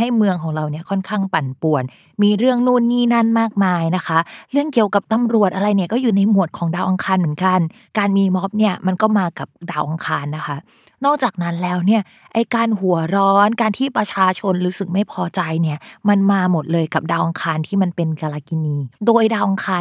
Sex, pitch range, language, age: female, 170-220 Hz, Thai, 20-39